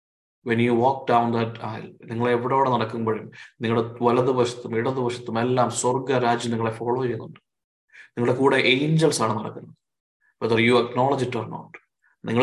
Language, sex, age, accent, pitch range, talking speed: Malayalam, male, 20-39, native, 115-125 Hz, 150 wpm